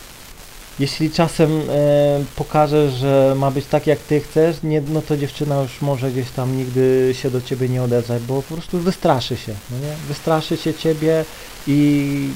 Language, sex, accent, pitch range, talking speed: Polish, male, native, 140-160 Hz, 155 wpm